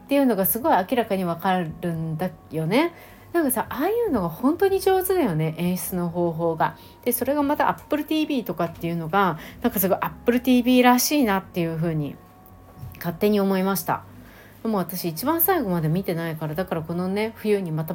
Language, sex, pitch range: Japanese, female, 160-220 Hz